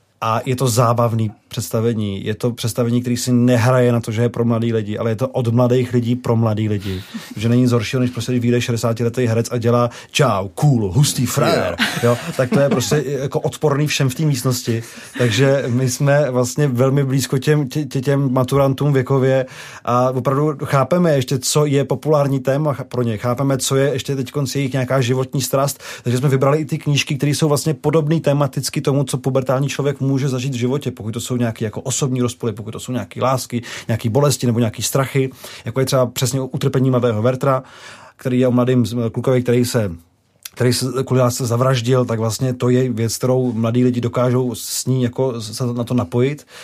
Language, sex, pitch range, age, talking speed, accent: Czech, male, 120-140 Hz, 30-49, 200 wpm, native